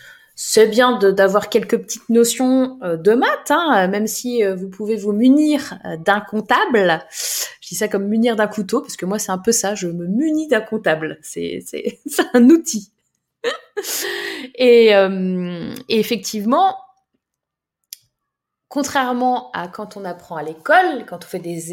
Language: French